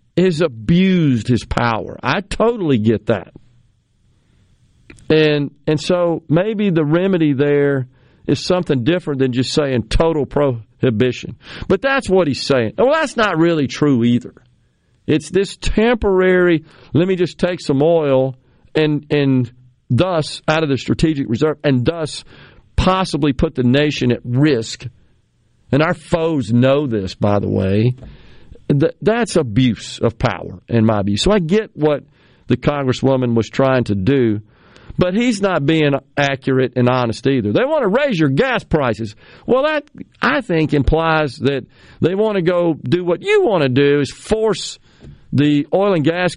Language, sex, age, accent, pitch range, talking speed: English, male, 50-69, American, 125-170 Hz, 155 wpm